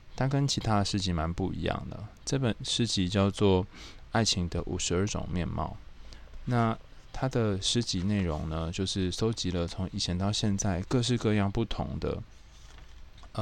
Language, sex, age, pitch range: Chinese, male, 20-39, 90-110 Hz